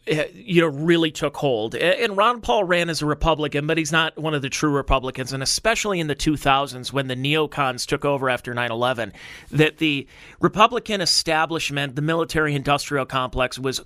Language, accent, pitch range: English, American, 145-180 Hz